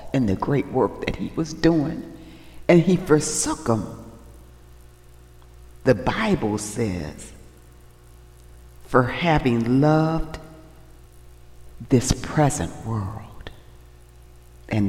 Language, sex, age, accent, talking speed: English, female, 60-79, American, 90 wpm